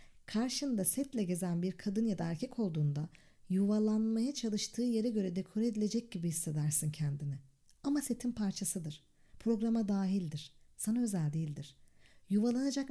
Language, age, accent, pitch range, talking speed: Turkish, 40-59, native, 170-240 Hz, 125 wpm